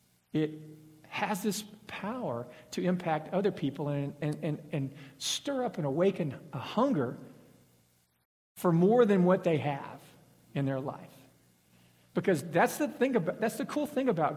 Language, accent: English, American